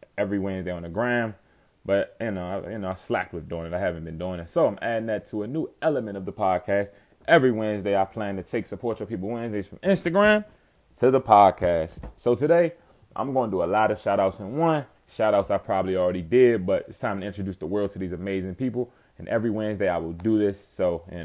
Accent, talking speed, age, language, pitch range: American, 230 wpm, 20-39, English, 100-135 Hz